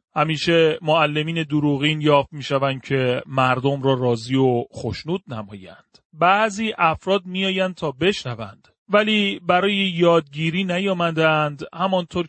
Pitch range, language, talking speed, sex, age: 125-165 Hz, Persian, 110 wpm, male, 40-59